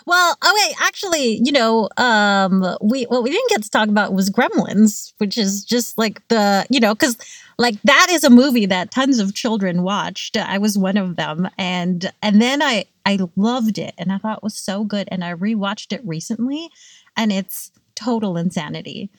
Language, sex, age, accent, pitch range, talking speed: English, female, 30-49, American, 200-265 Hz, 195 wpm